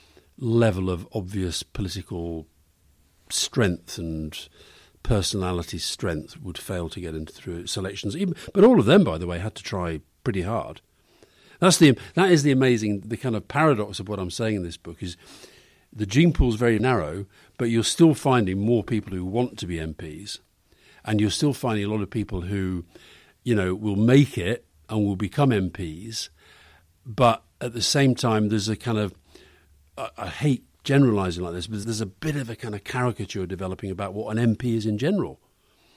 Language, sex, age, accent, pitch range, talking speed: English, male, 50-69, British, 95-125 Hz, 185 wpm